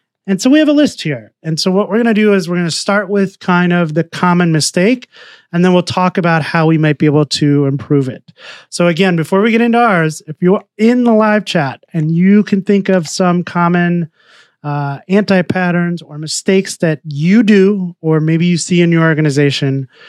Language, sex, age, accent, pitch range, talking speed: English, male, 30-49, American, 160-205 Hz, 215 wpm